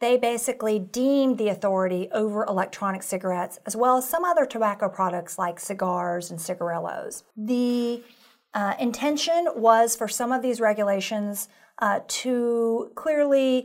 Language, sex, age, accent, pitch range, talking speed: English, female, 40-59, American, 200-250 Hz, 135 wpm